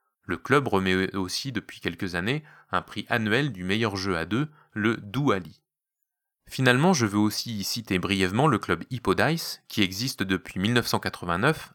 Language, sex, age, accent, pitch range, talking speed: French, male, 30-49, French, 95-140 Hz, 155 wpm